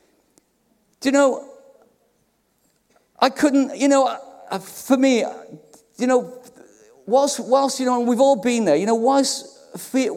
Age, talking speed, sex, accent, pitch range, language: 50-69, 135 wpm, male, British, 210-260 Hz, English